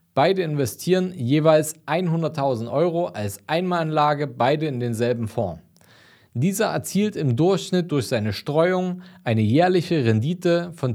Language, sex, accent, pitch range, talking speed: German, male, German, 120-170 Hz, 120 wpm